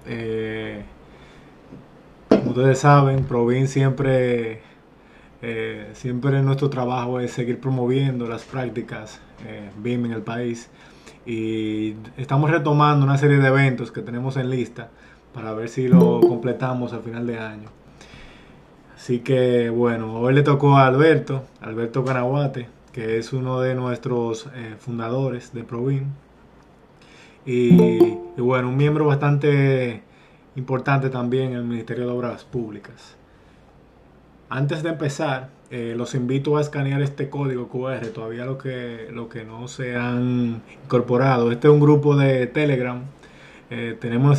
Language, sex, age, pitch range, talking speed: Spanish, male, 20-39, 120-135 Hz, 140 wpm